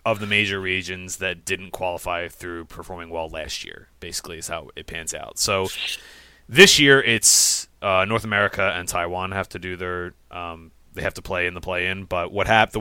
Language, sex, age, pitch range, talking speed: English, male, 30-49, 85-110 Hz, 205 wpm